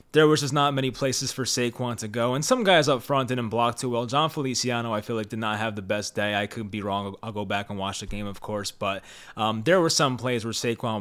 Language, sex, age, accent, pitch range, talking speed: English, male, 20-39, American, 115-150 Hz, 280 wpm